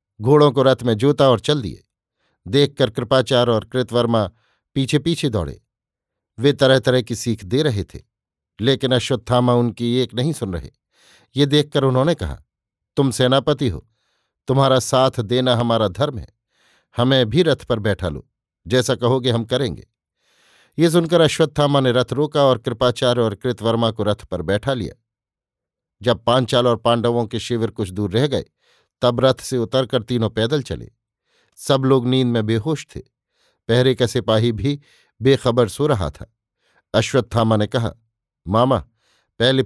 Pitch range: 115-135 Hz